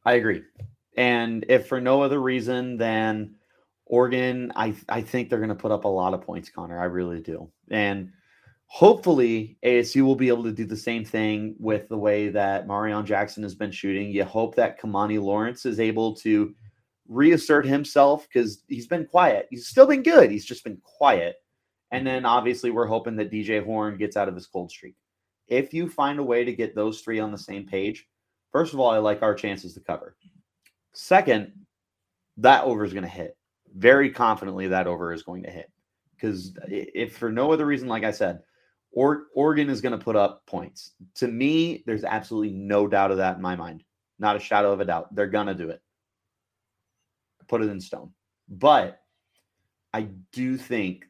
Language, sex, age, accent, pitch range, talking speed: English, male, 30-49, American, 100-125 Hz, 195 wpm